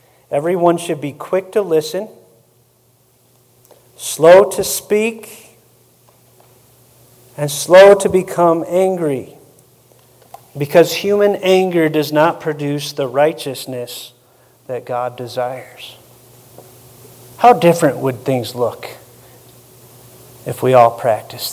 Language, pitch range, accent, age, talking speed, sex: English, 125-160 Hz, American, 40-59, 95 wpm, male